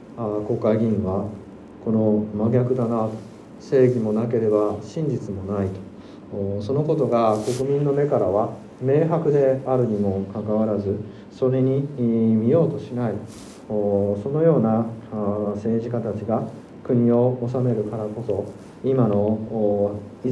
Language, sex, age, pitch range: Japanese, male, 40-59, 105-130 Hz